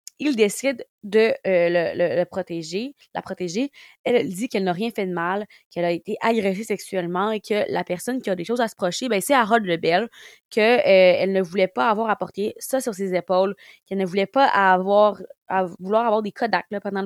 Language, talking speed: French, 215 wpm